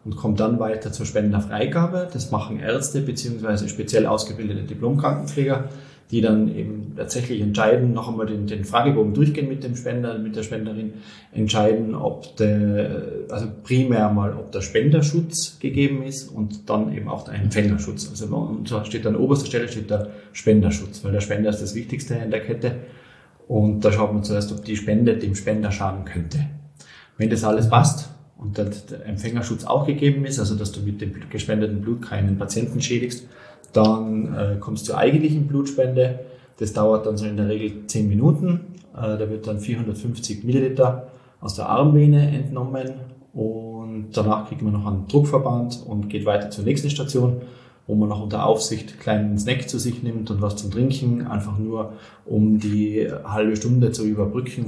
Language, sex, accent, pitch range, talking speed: German, male, German, 105-130 Hz, 175 wpm